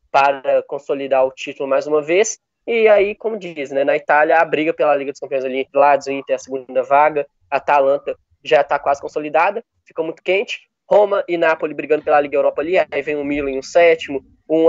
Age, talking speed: 10-29, 215 wpm